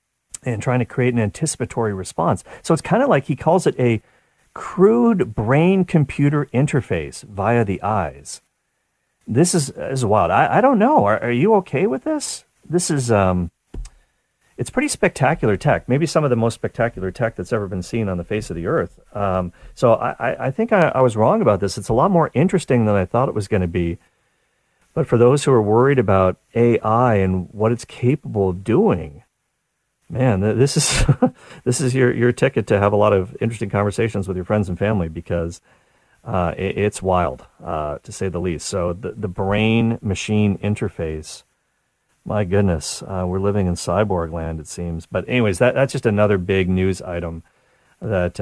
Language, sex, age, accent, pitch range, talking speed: English, male, 40-59, American, 95-125 Hz, 190 wpm